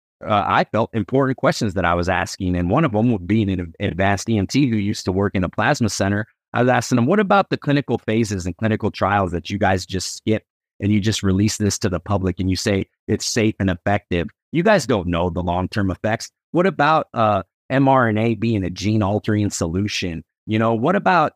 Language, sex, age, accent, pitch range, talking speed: English, male, 30-49, American, 100-140 Hz, 220 wpm